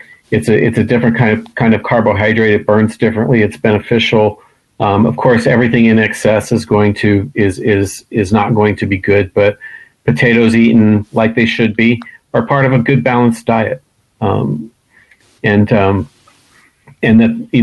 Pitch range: 105-120 Hz